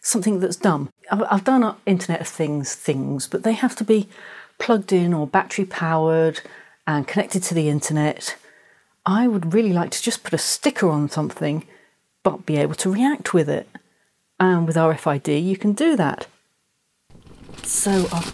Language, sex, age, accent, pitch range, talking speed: English, female, 40-59, British, 150-205 Hz, 165 wpm